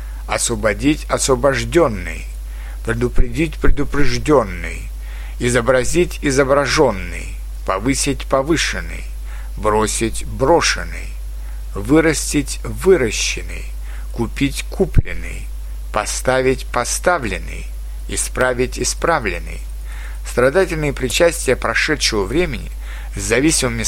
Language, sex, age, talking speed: Russian, male, 60-79, 60 wpm